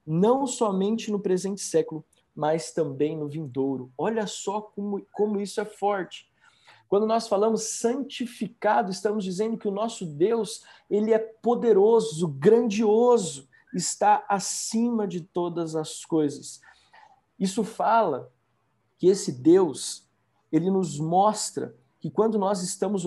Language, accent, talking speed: Portuguese, Brazilian, 125 wpm